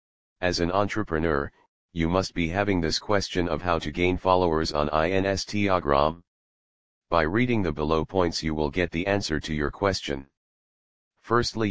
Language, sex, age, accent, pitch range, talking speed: English, male, 40-59, American, 75-95 Hz, 155 wpm